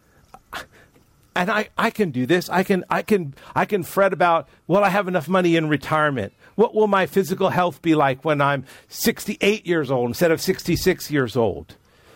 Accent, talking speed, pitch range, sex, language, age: American, 190 wpm, 150-195 Hz, male, English, 50-69